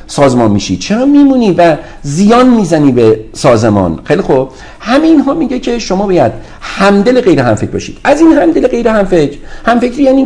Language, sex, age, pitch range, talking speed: Persian, male, 50-69, 140-220 Hz, 165 wpm